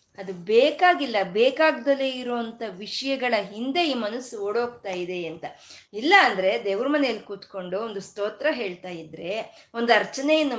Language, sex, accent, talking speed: Kannada, female, native, 125 wpm